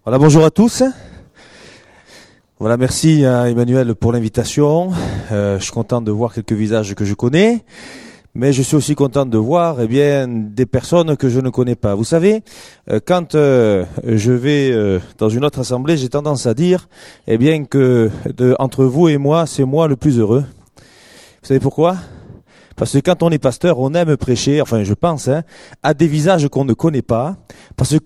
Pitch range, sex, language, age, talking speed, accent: 130-185 Hz, male, French, 30-49, 190 wpm, French